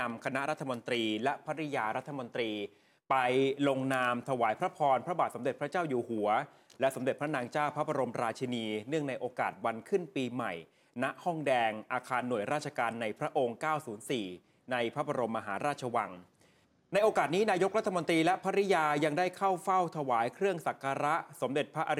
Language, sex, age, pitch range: Thai, male, 20-39, 120-150 Hz